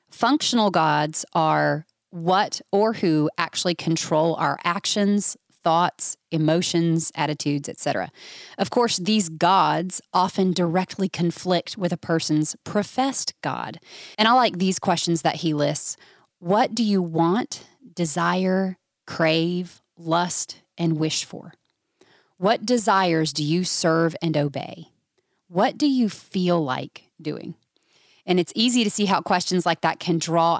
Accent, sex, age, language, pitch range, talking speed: American, female, 30-49, English, 160-190 Hz, 135 wpm